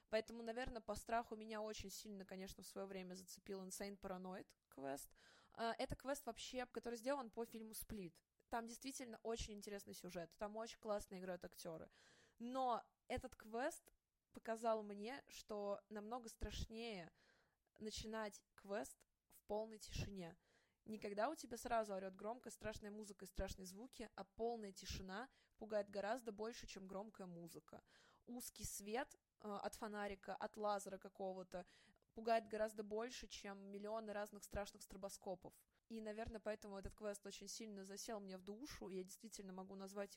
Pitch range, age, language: 195-230 Hz, 20-39, Russian